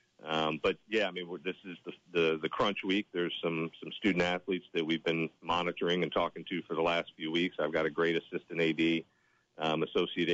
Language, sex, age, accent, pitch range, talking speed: English, male, 40-59, American, 80-95 Hz, 220 wpm